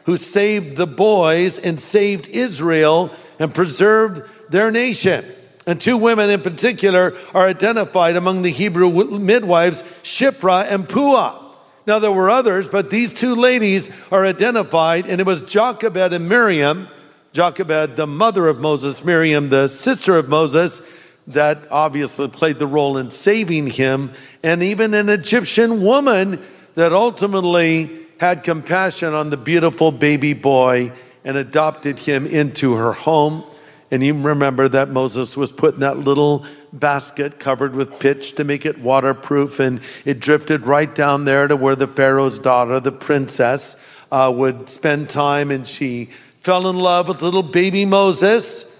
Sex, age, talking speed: male, 50-69, 150 wpm